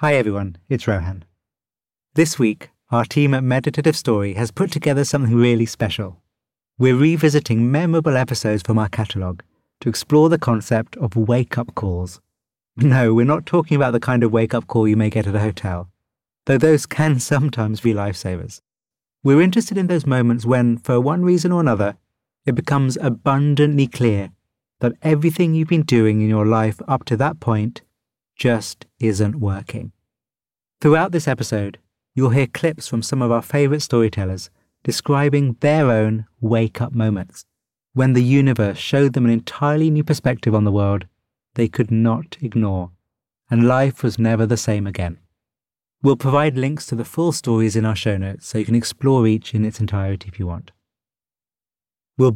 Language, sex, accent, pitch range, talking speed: English, male, British, 110-140 Hz, 170 wpm